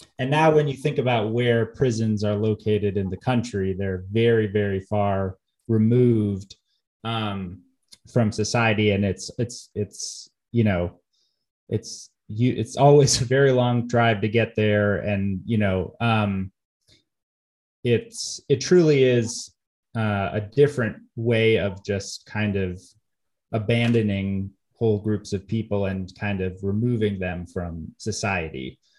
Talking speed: 135 wpm